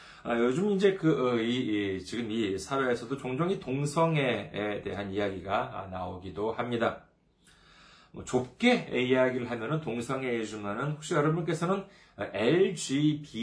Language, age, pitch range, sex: Korean, 40-59, 105-160 Hz, male